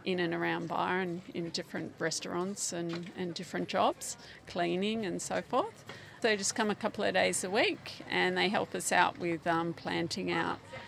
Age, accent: 40-59, Australian